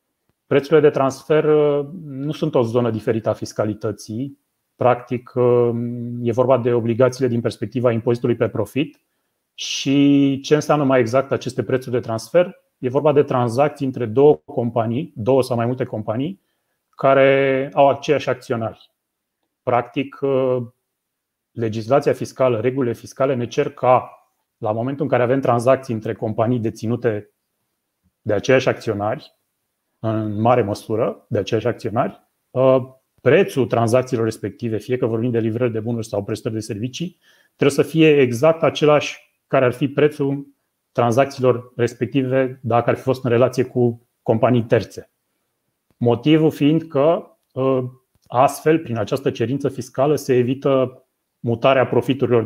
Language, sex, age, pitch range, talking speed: Romanian, male, 30-49, 120-140 Hz, 135 wpm